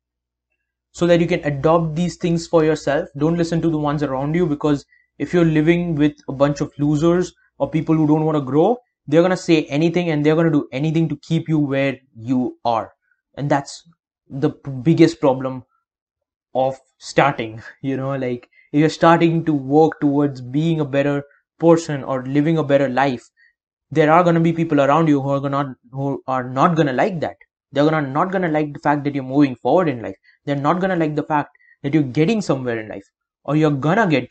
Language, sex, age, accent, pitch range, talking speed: English, male, 20-39, Indian, 140-165 Hz, 210 wpm